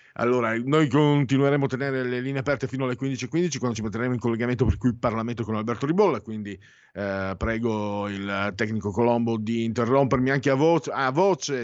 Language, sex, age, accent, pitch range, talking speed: Italian, male, 50-69, native, 110-145 Hz, 180 wpm